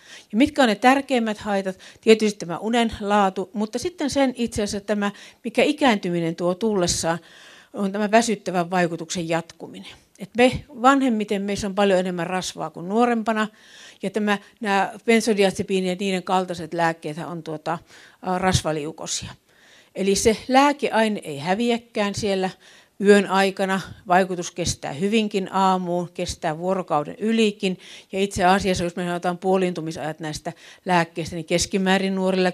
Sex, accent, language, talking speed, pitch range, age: female, native, Finnish, 135 wpm, 170-215 Hz, 50-69